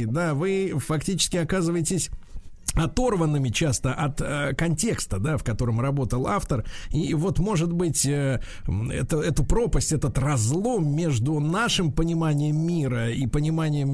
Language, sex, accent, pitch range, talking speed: Russian, male, native, 125-165 Hz, 125 wpm